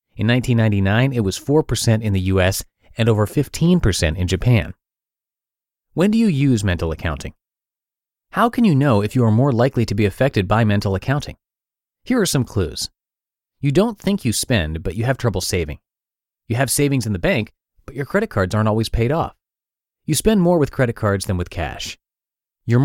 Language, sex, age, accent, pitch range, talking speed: English, male, 30-49, American, 95-135 Hz, 185 wpm